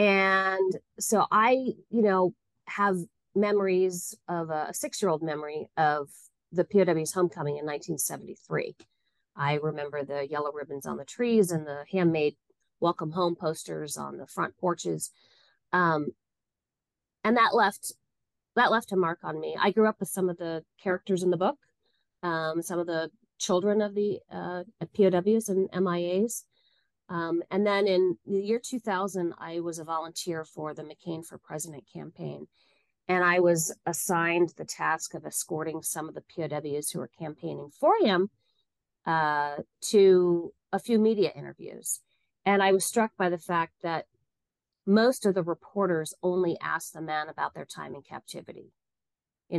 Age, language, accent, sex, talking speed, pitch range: 30-49, English, American, female, 155 wpm, 155-195 Hz